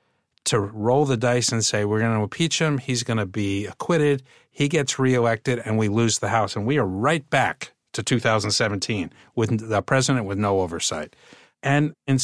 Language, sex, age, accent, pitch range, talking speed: English, male, 50-69, American, 100-130 Hz, 190 wpm